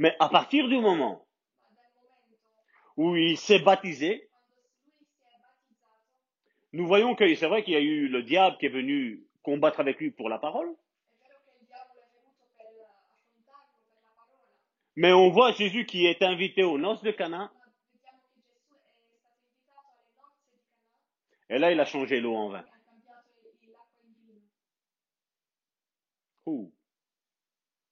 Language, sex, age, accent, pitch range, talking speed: French, male, 40-59, French, 175-245 Hz, 105 wpm